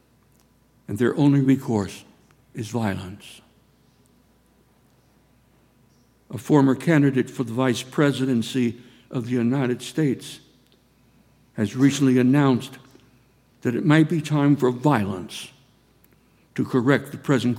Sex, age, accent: male, 60-79, American